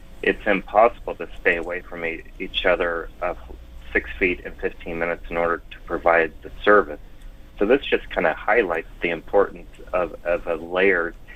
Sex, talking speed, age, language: male, 180 wpm, 30-49, English